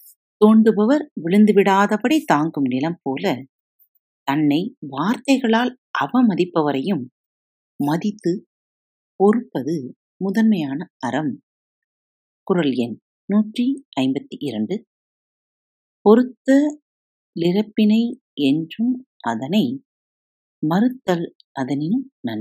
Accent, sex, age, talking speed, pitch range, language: native, female, 50-69, 55 wpm, 160-255 Hz, Tamil